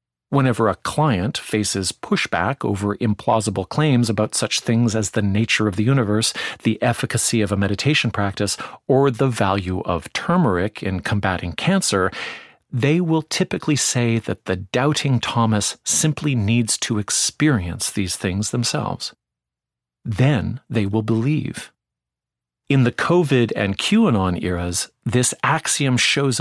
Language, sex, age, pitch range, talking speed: English, male, 40-59, 100-140 Hz, 135 wpm